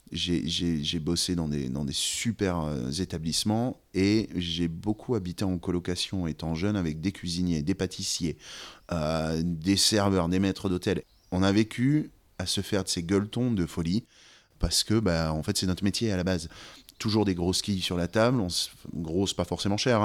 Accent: French